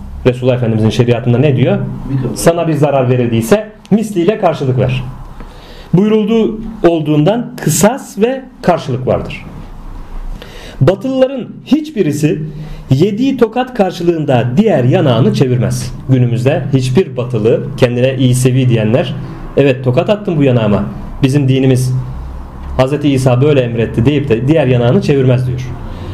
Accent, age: native, 40-59